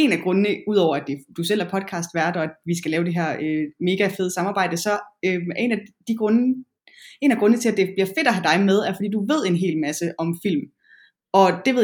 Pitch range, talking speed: 170-225 Hz, 245 wpm